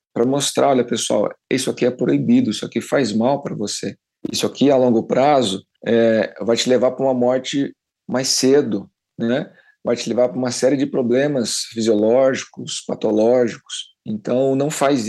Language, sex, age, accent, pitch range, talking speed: Portuguese, male, 50-69, Brazilian, 115-135 Hz, 165 wpm